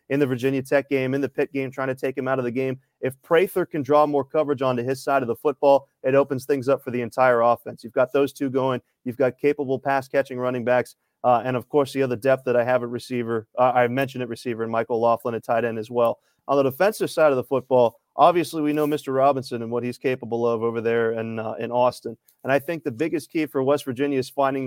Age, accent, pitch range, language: 30-49, American, 125-145 Hz, English